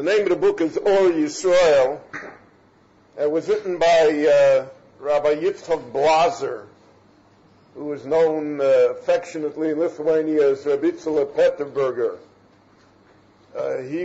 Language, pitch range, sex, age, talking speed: English, 145-185 Hz, male, 50-69, 125 wpm